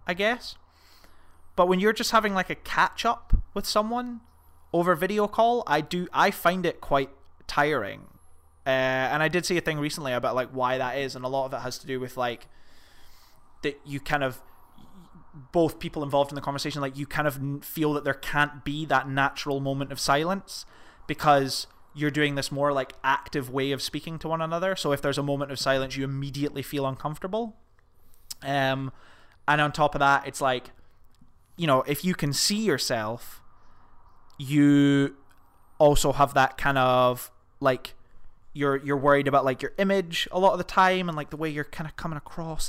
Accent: British